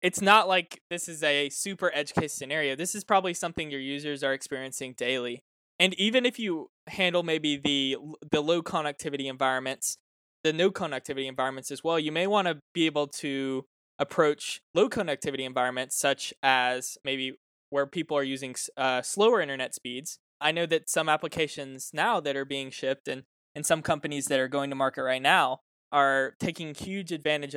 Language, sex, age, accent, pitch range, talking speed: English, male, 20-39, American, 135-165 Hz, 180 wpm